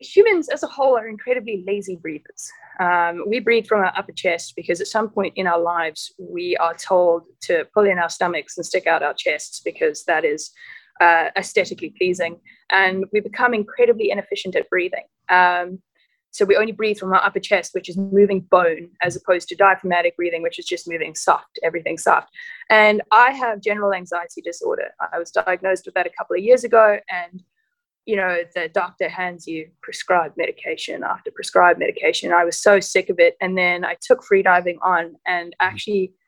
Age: 20-39